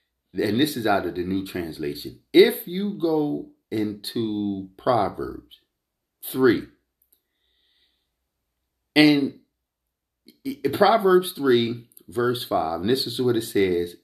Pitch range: 85-125 Hz